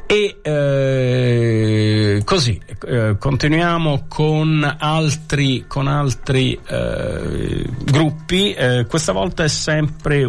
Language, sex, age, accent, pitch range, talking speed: Italian, male, 40-59, native, 115-140 Hz, 90 wpm